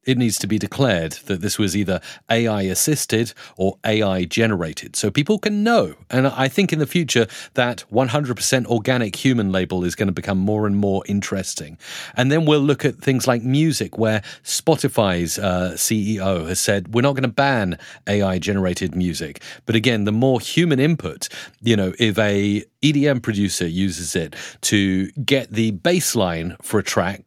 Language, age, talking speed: English, 40-59, 170 wpm